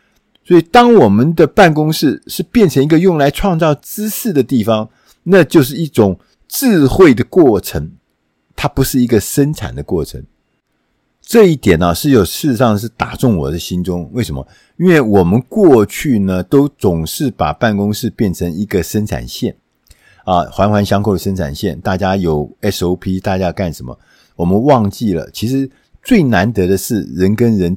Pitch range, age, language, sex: 90-145 Hz, 50-69, Chinese, male